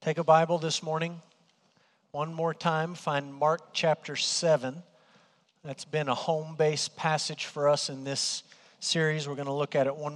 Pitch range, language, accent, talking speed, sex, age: 145-170 Hz, English, American, 170 wpm, male, 40-59